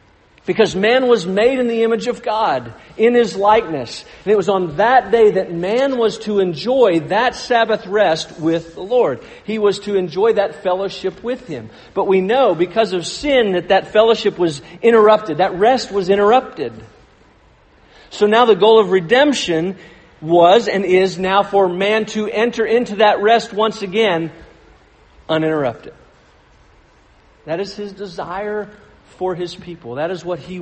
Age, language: 50-69, English